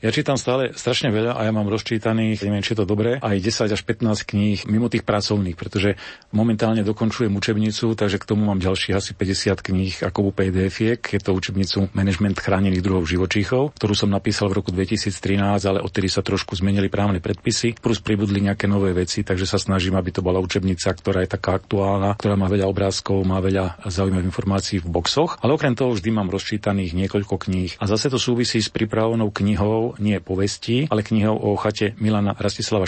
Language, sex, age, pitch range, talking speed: Slovak, male, 40-59, 95-110 Hz, 190 wpm